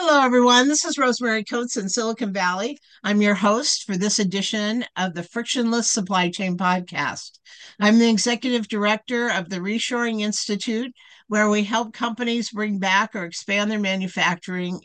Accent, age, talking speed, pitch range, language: American, 50-69, 160 wpm, 185-230 Hz, English